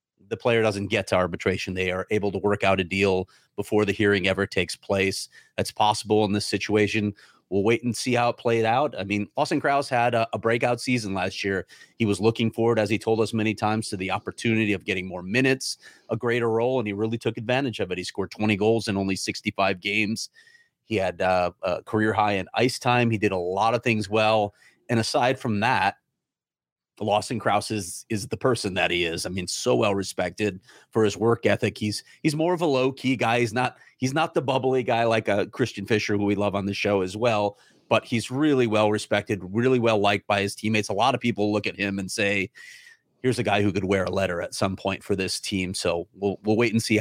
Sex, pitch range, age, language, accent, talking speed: male, 100-115 Hz, 30-49, English, American, 235 wpm